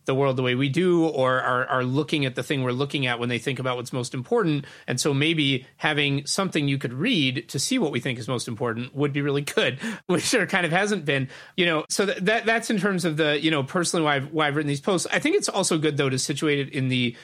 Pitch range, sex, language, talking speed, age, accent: 130-165 Hz, male, English, 280 wpm, 30-49, American